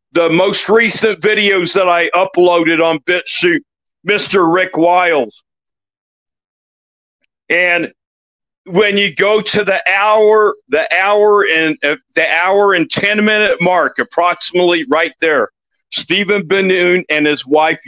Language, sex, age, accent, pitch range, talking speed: English, male, 50-69, American, 175-210 Hz, 120 wpm